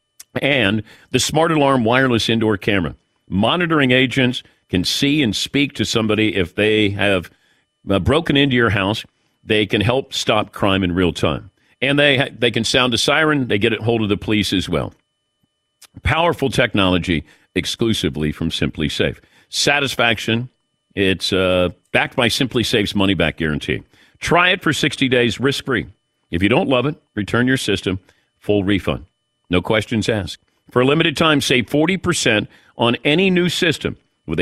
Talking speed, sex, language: 165 wpm, male, English